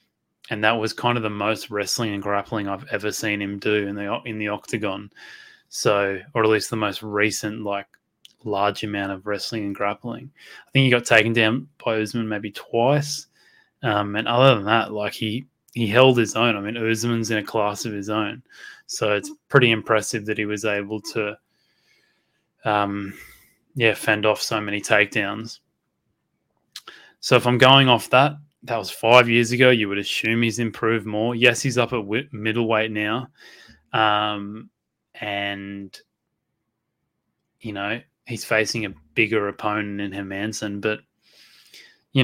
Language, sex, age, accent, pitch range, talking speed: English, male, 20-39, Australian, 105-120 Hz, 165 wpm